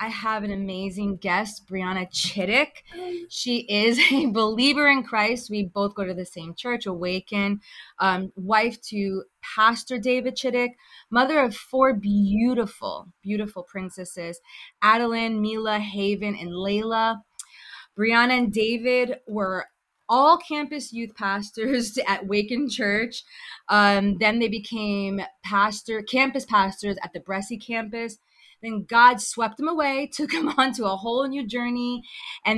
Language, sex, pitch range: English, female, 200-245 Hz